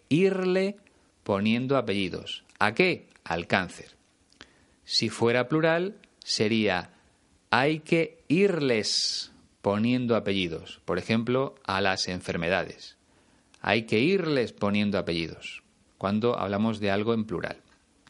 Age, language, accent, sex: 30-49, Spanish, Spanish, male